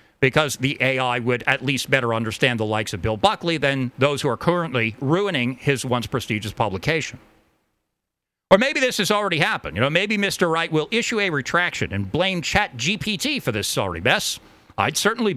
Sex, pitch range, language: male, 125-190 Hz, English